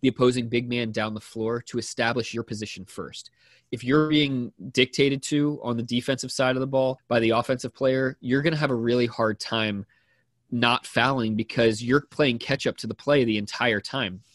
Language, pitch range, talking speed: English, 115-130 Hz, 205 wpm